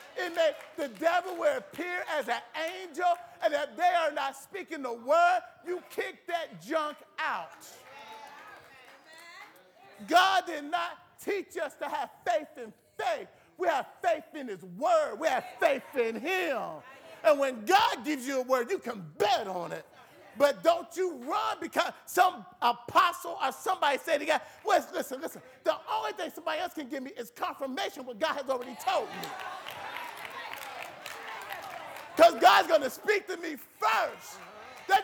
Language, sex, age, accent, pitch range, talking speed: English, male, 40-59, American, 270-370 Hz, 160 wpm